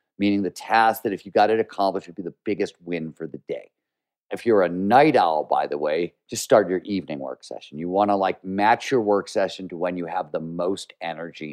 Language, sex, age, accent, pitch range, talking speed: English, male, 50-69, American, 85-110 Hz, 235 wpm